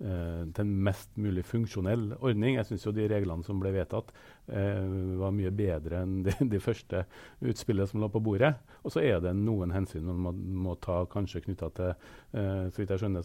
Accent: Norwegian